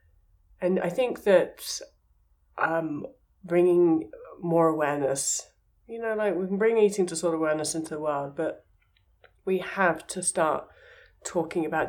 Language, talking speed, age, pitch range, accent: English, 135 wpm, 30-49, 145-180 Hz, British